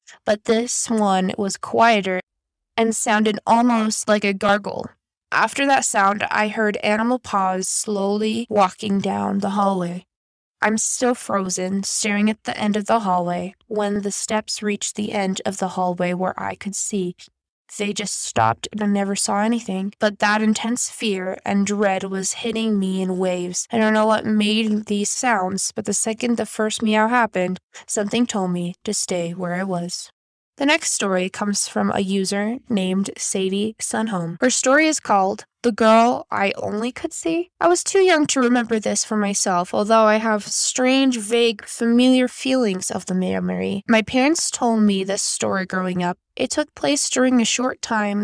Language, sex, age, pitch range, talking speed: English, female, 10-29, 195-230 Hz, 175 wpm